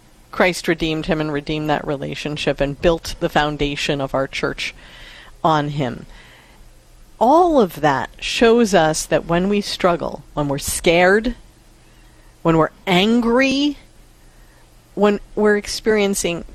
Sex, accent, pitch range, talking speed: female, American, 150-195 Hz, 125 wpm